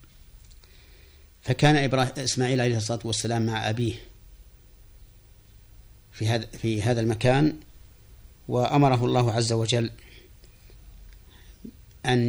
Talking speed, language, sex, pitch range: 90 wpm, Arabic, male, 100-125 Hz